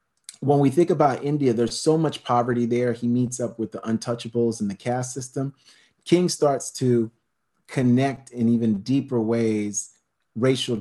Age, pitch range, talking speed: 40-59, 115-145 Hz, 160 wpm